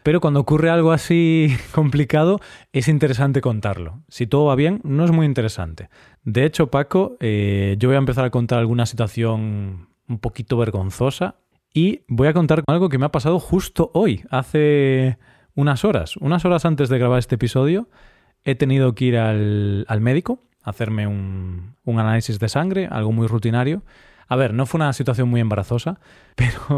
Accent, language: Spanish, Spanish